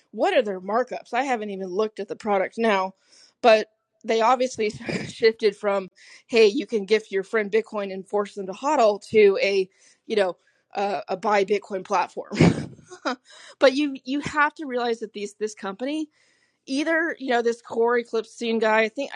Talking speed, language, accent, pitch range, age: 180 wpm, English, American, 200-250 Hz, 20-39